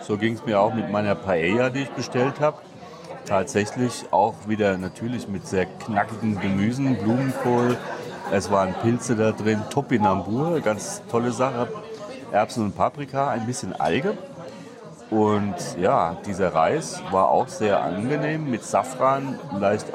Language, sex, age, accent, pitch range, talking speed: German, male, 40-59, German, 100-130 Hz, 140 wpm